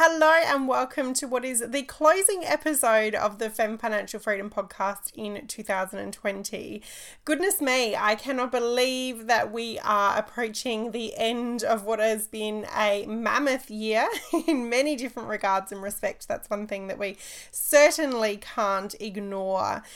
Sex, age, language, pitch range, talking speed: female, 20-39, English, 205-250 Hz, 145 wpm